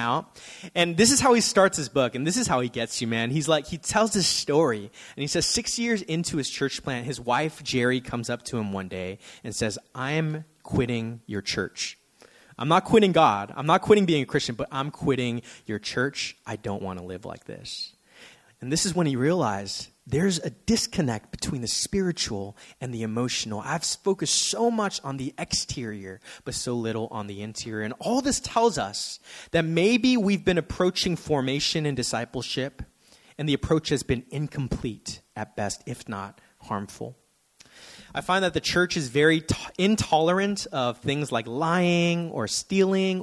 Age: 20-39